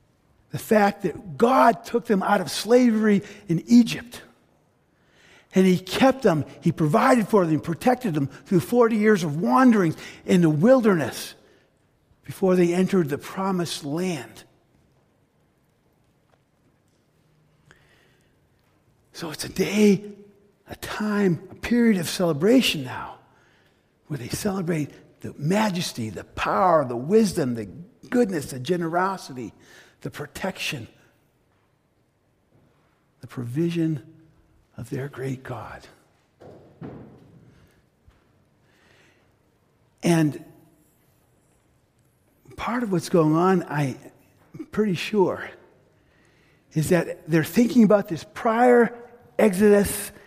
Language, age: English, 50-69